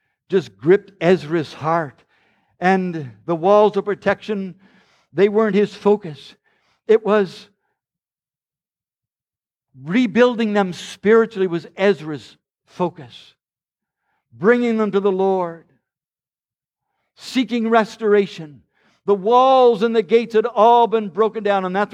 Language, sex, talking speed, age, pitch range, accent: English, male, 110 wpm, 60-79, 180-220 Hz, American